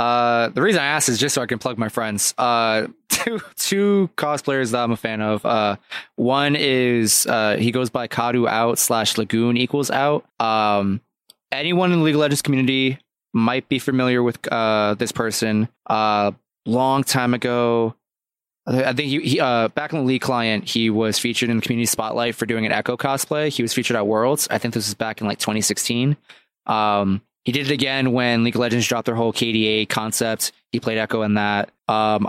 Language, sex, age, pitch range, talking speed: English, male, 20-39, 115-130 Hz, 205 wpm